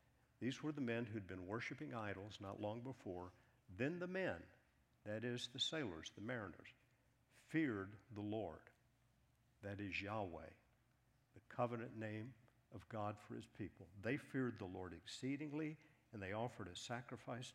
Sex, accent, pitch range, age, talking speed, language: male, American, 105-125 Hz, 50-69, 150 wpm, English